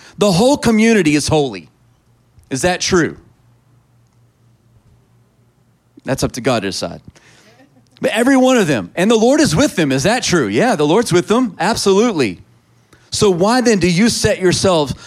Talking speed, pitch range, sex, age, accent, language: 165 wpm, 120-170 Hz, male, 40-59, American, English